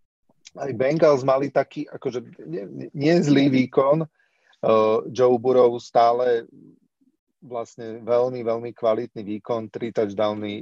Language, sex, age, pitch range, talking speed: Slovak, male, 40-59, 110-130 Hz, 100 wpm